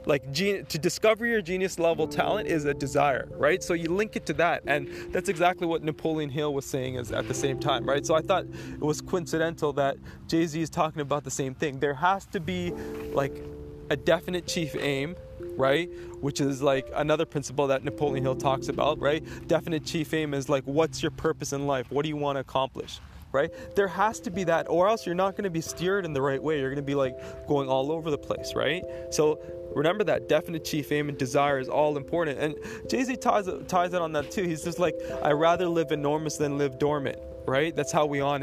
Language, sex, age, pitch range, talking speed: English, male, 20-39, 145-180 Hz, 225 wpm